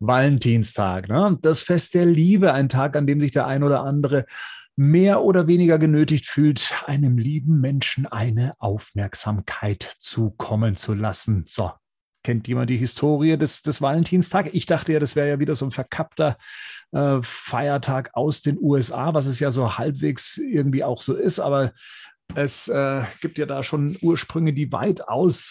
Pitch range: 115-155 Hz